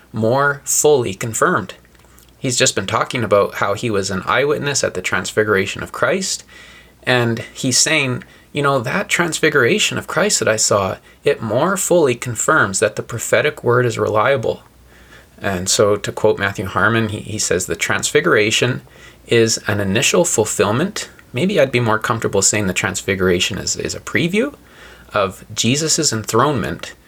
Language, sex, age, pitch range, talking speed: English, male, 20-39, 110-140 Hz, 155 wpm